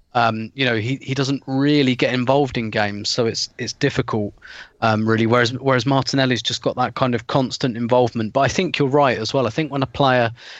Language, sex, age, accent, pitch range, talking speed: English, male, 30-49, British, 115-135 Hz, 220 wpm